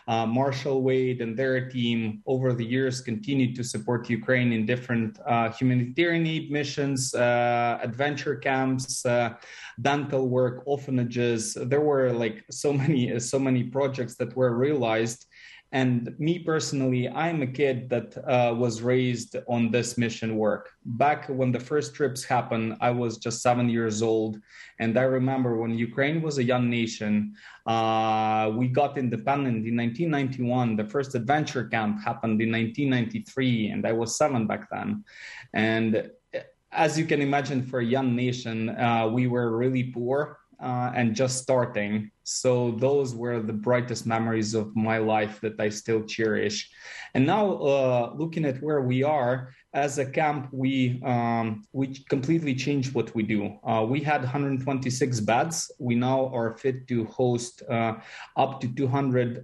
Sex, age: male, 20-39